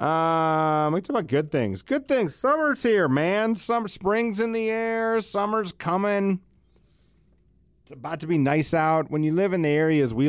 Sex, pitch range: male, 110-160 Hz